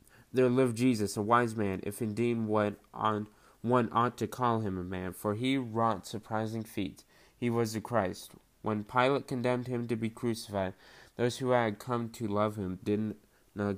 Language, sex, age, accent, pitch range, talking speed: English, male, 20-39, American, 100-125 Hz, 180 wpm